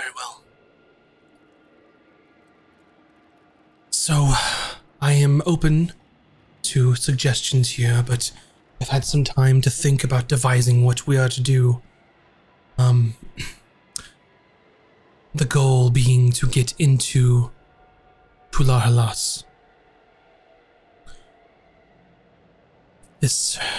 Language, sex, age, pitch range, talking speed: English, male, 20-39, 125-145 Hz, 85 wpm